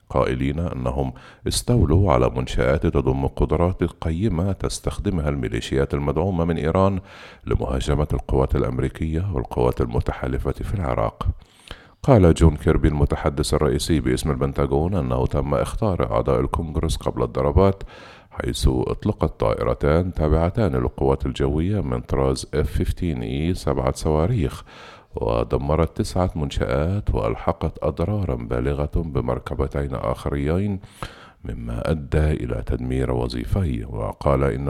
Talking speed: 105 wpm